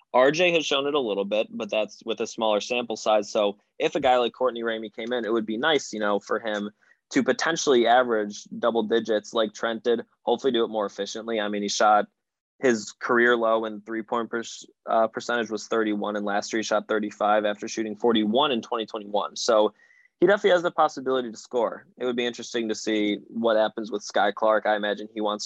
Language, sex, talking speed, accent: English, male, 220 wpm, American